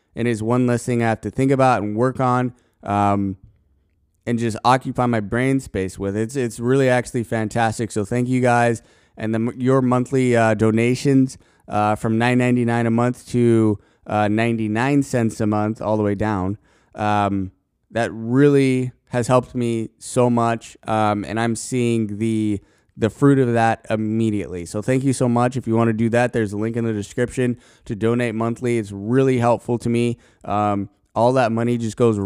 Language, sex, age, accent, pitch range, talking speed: English, male, 20-39, American, 105-120 Hz, 195 wpm